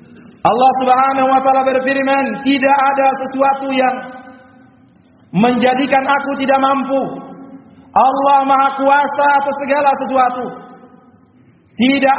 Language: Indonesian